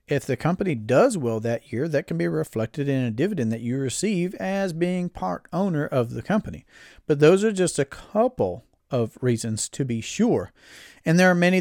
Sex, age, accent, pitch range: male, 40-59, American, 115-155 Hz